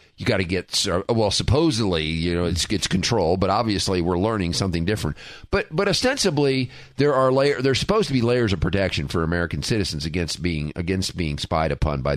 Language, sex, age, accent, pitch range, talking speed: English, male, 40-59, American, 95-130 Hz, 190 wpm